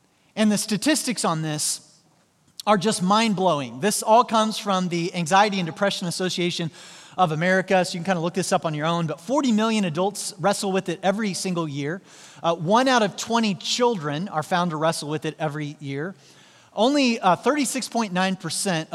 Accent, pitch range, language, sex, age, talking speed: American, 165-210 Hz, English, male, 30-49, 180 wpm